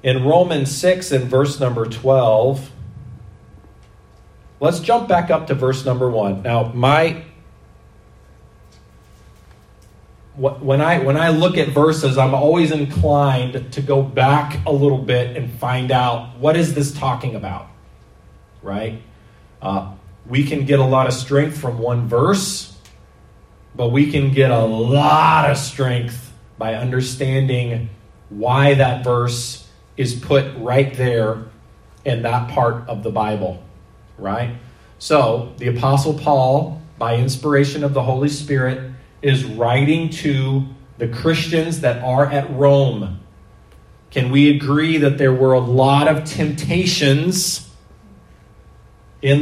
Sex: male